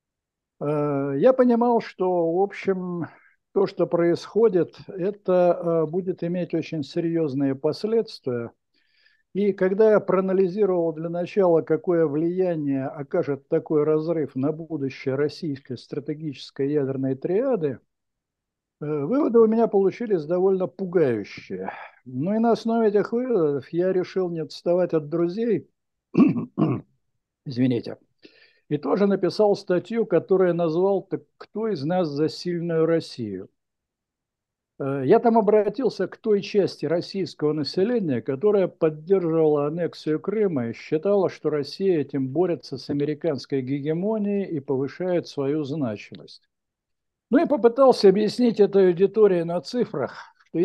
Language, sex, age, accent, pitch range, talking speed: Russian, male, 60-79, native, 150-195 Hz, 115 wpm